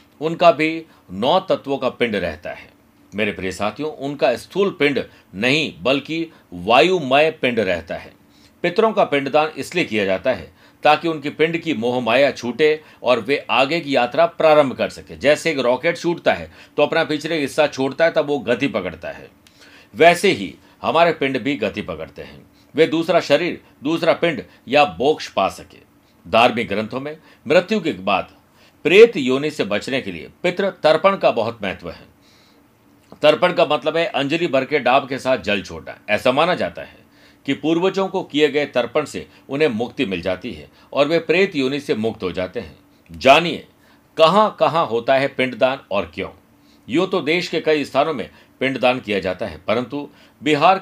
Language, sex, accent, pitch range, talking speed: Hindi, male, native, 125-165 Hz, 175 wpm